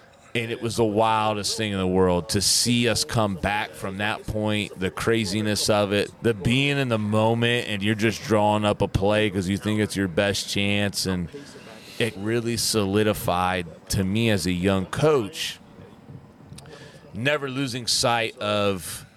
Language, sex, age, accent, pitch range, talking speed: English, male, 30-49, American, 95-115 Hz, 170 wpm